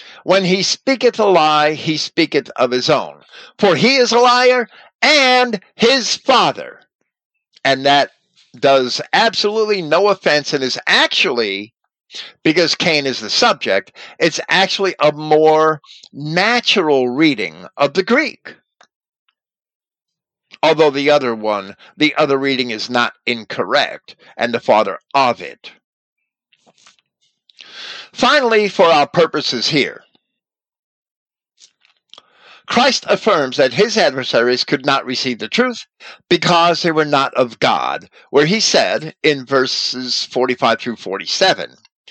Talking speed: 120 wpm